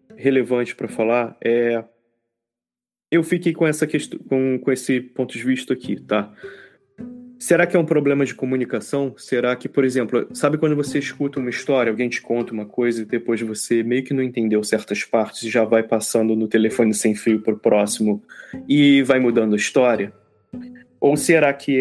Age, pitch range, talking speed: 20-39, 115-150 Hz, 180 wpm